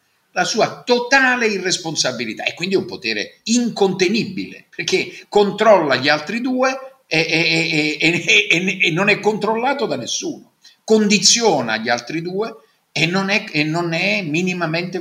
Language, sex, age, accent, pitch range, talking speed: Italian, male, 50-69, native, 170-245 Hz, 145 wpm